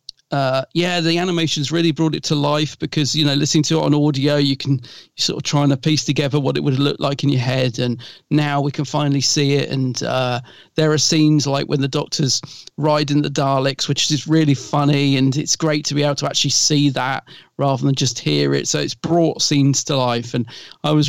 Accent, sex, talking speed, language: British, male, 235 wpm, English